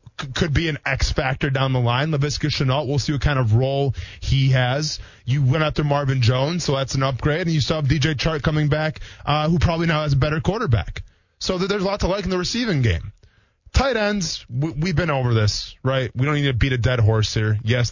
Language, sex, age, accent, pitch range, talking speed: English, male, 20-39, American, 110-155 Hz, 235 wpm